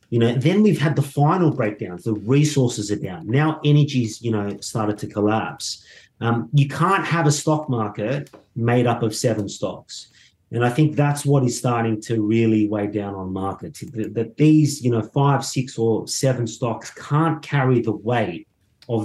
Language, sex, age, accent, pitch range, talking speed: English, male, 30-49, Australian, 105-140 Hz, 185 wpm